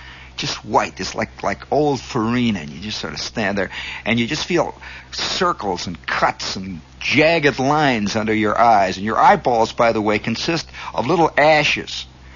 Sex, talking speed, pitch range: male, 180 wpm, 95-135 Hz